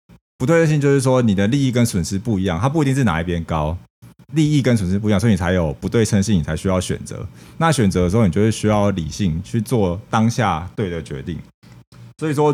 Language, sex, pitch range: Chinese, male, 85-115 Hz